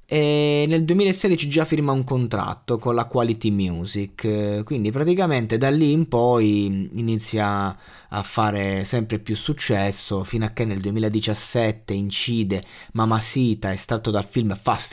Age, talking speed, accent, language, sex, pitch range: 20-39, 140 wpm, native, Italian, male, 105-130 Hz